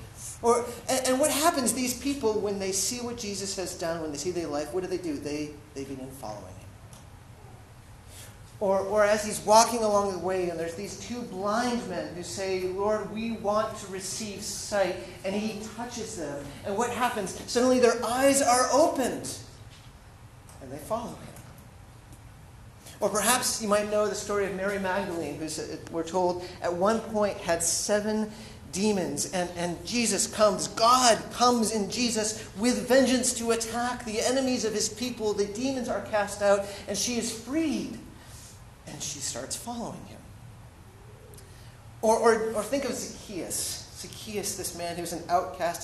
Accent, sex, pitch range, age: American, male, 140-220 Hz, 30-49